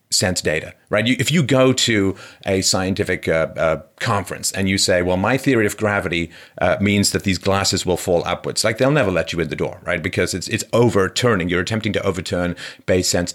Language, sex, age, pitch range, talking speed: English, male, 40-59, 85-110 Hz, 210 wpm